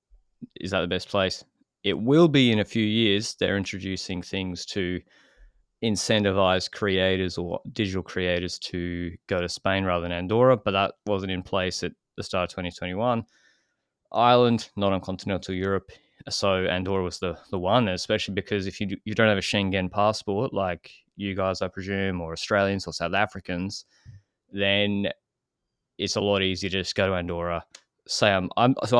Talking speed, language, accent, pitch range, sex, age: 170 wpm, English, Australian, 95-110 Hz, male, 20-39